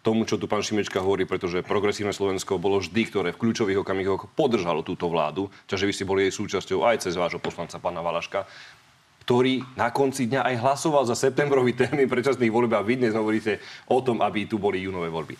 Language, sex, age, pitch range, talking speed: Slovak, male, 30-49, 95-120 Hz, 205 wpm